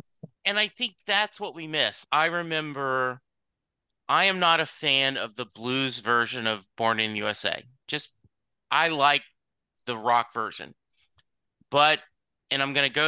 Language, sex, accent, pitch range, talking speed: English, male, American, 115-140 Hz, 160 wpm